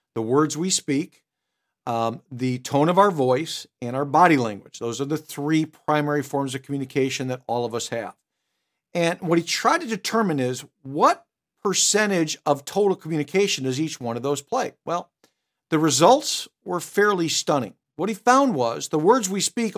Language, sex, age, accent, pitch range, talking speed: English, male, 50-69, American, 140-190 Hz, 180 wpm